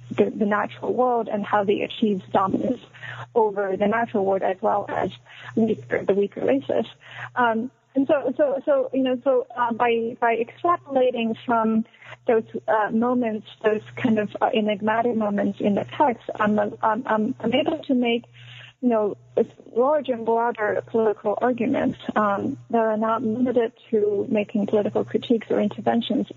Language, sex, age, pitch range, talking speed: English, female, 30-49, 200-235 Hz, 160 wpm